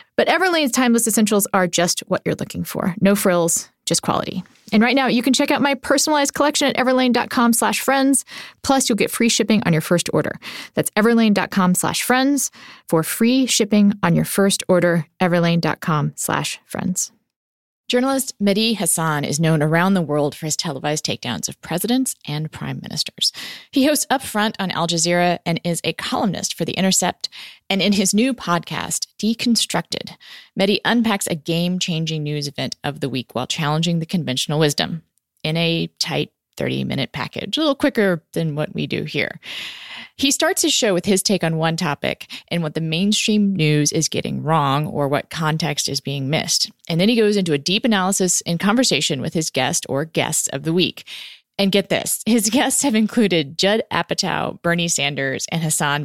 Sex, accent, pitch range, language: female, American, 160-225 Hz, English